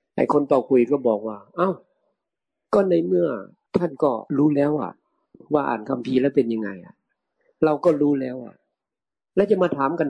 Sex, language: male, Thai